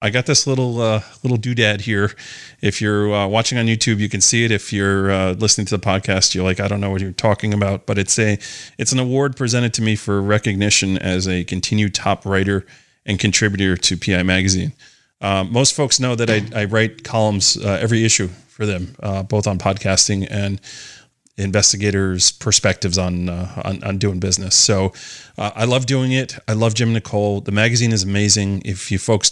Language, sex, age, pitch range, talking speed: English, male, 30-49, 95-115 Hz, 205 wpm